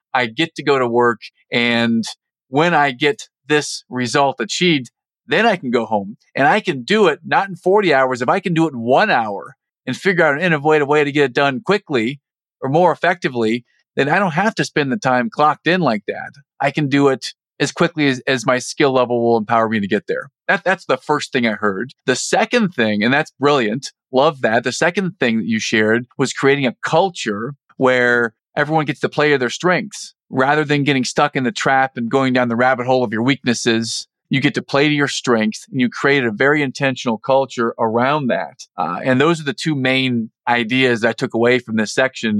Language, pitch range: English, 115-145 Hz